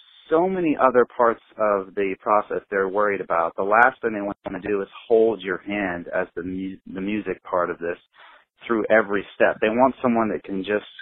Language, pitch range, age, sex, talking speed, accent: English, 90-105 Hz, 30-49, male, 200 wpm, American